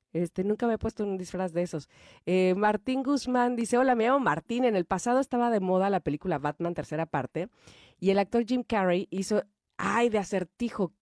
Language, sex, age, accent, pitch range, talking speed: Spanish, female, 30-49, Mexican, 190-255 Hz, 200 wpm